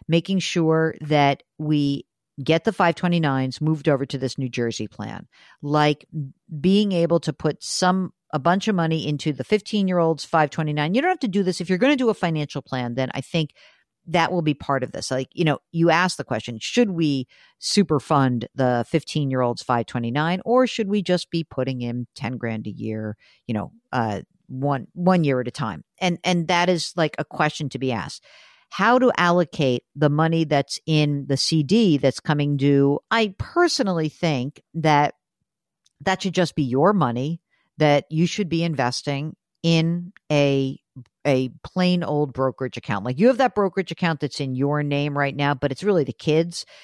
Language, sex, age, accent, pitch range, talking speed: English, female, 50-69, American, 135-175 Hz, 190 wpm